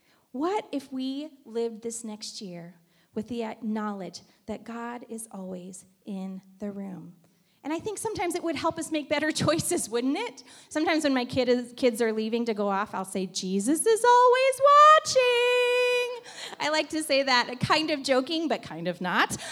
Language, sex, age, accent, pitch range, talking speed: English, female, 30-49, American, 225-310 Hz, 180 wpm